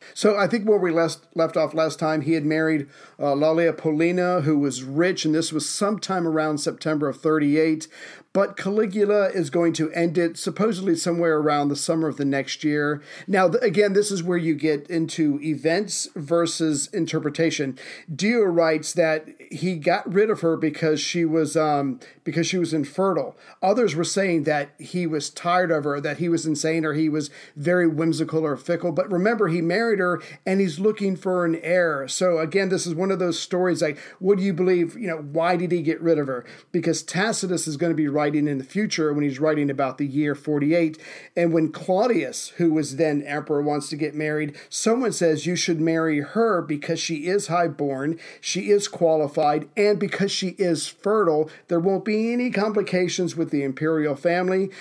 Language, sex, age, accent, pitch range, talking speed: English, male, 40-59, American, 155-185 Hz, 195 wpm